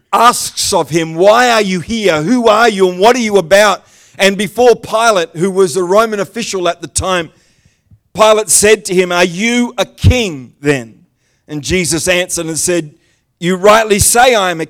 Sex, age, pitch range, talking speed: male, 50-69, 170-225 Hz, 190 wpm